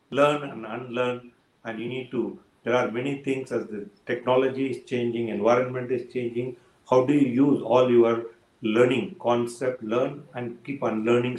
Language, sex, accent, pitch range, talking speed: English, male, Indian, 115-140 Hz, 170 wpm